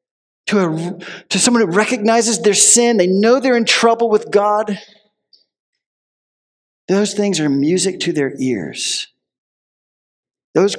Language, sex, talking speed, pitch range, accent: English, male, 130 wpm, 170-260 Hz, American